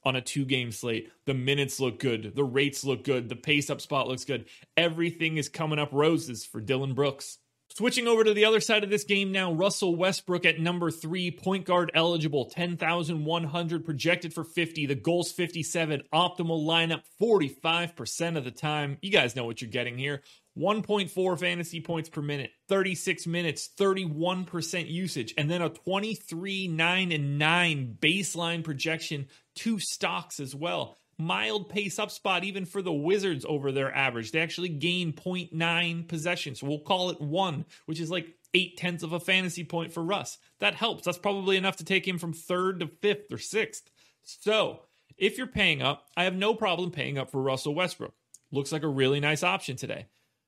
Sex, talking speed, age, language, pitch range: male, 175 wpm, 30-49, English, 145-185 Hz